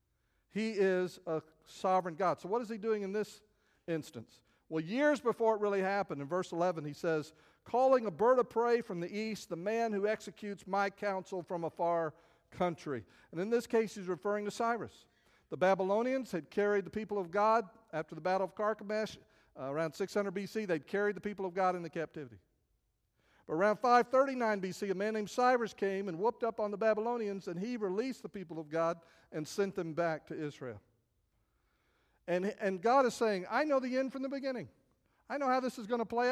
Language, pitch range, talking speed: English, 170-225 Hz, 205 wpm